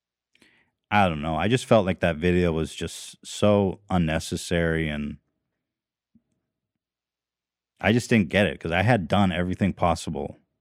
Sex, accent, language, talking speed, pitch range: male, American, English, 140 wpm, 90-125 Hz